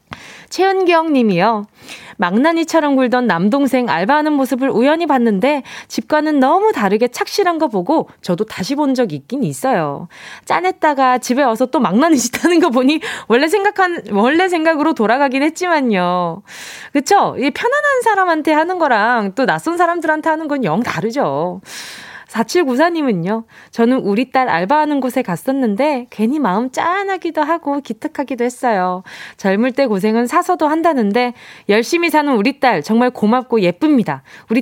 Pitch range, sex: 220-315 Hz, female